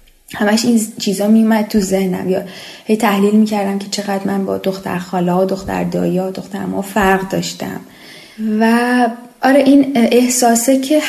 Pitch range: 190-255 Hz